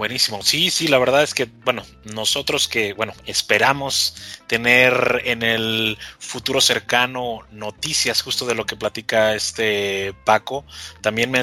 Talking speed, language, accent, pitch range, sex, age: 140 wpm, Spanish, Mexican, 105-120 Hz, male, 20-39